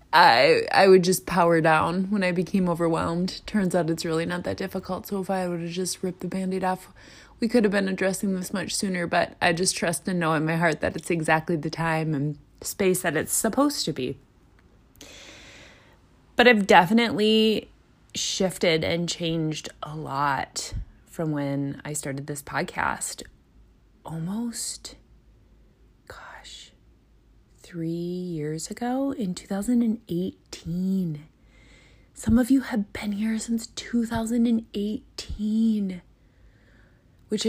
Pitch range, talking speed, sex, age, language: 165-215 Hz, 140 wpm, female, 20-39, English